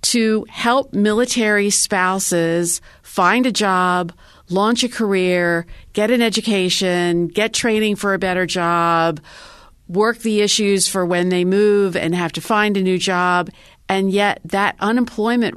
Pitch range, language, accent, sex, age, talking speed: 170-210 Hz, English, American, female, 50-69, 145 wpm